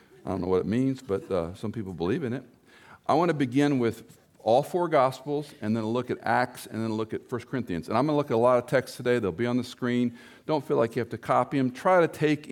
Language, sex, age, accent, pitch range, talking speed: English, male, 50-69, American, 105-135 Hz, 285 wpm